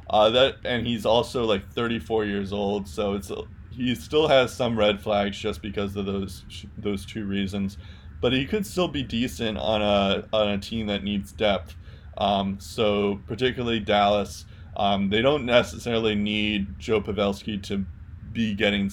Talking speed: 165 wpm